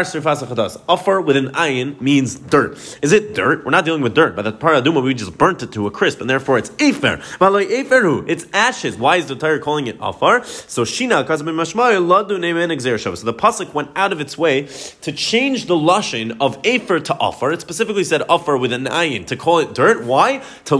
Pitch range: 135-175 Hz